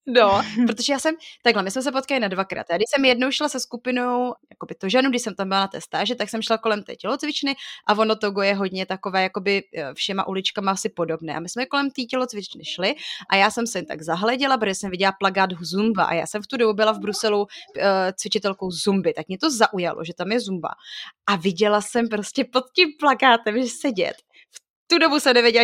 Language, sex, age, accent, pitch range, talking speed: Czech, female, 20-39, native, 195-240 Hz, 225 wpm